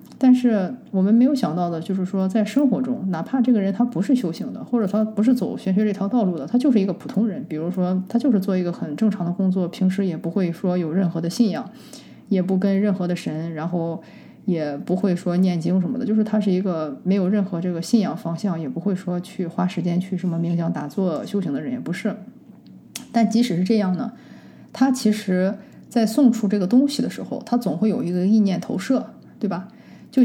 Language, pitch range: Chinese, 180-230 Hz